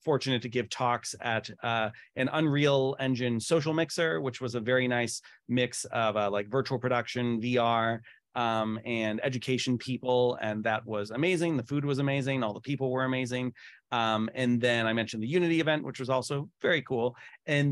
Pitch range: 110-130 Hz